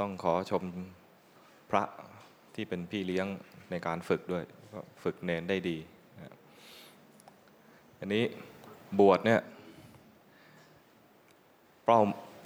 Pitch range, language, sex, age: 95-110 Hz, Thai, male, 20-39